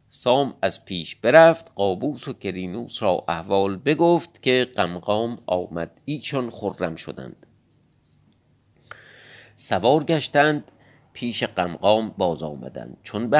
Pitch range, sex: 95-140 Hz, male